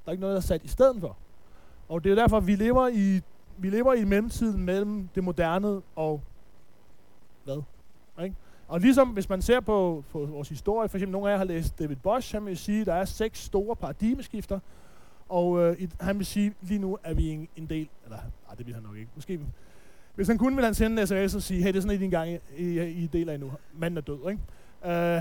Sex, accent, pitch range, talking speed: male, native, 145-200 Hz, 250 wpm